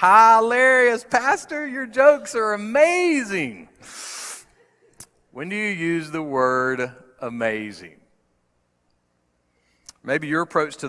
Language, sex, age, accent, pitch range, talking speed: English, male, 40-59, American, 120-175 Hz, 95 wpm